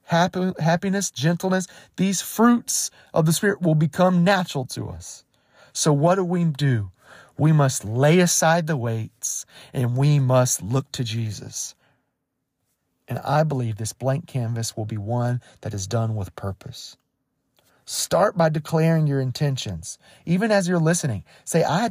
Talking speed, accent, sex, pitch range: 150 wpm, American, male, 130-185 Hz